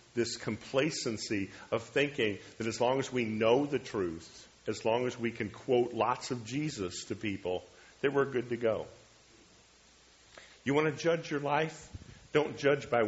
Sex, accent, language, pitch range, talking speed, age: male, American, English, 100-135 Hz, 170 wpm, 50-69